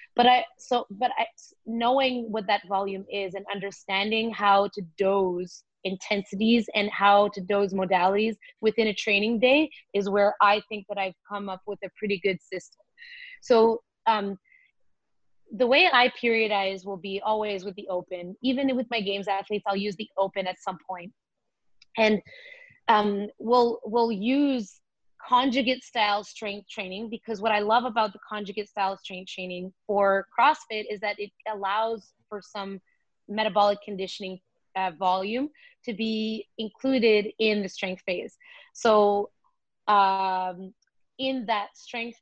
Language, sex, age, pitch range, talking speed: English, female, 20-39, 195-230 Hz, 150 wpm